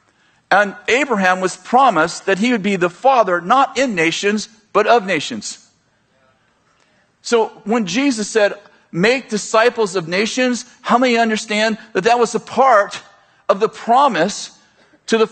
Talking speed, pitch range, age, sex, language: 145 wpm, 185-225 Hz, 50-69, male, English